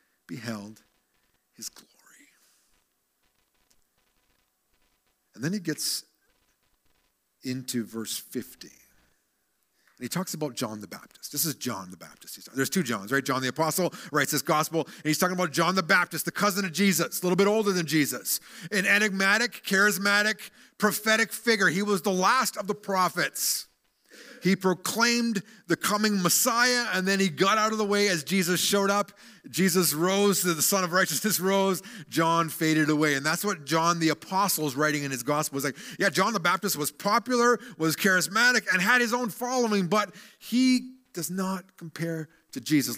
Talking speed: 170 wpm